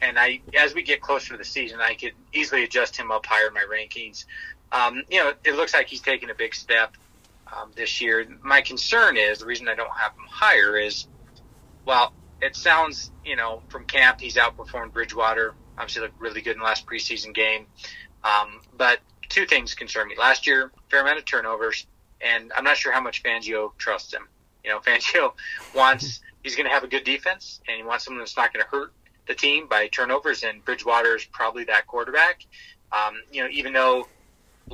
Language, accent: English, American